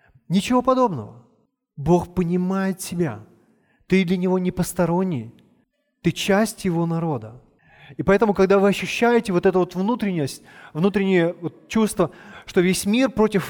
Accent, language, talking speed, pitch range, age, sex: native, Russian, 130 wpm, 165-215 Hz, 30-49, male